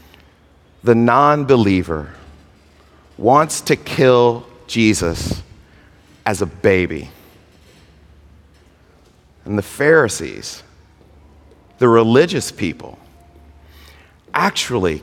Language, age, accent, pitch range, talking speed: English, 40-59, American, 75-120 Hz, 65 wpm